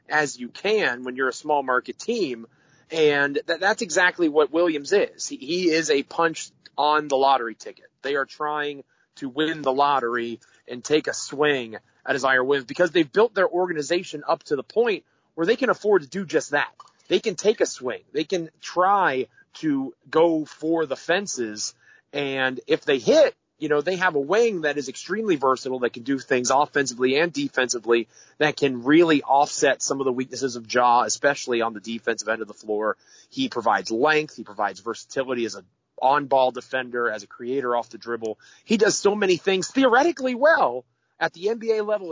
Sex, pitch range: male, 125-180 Hz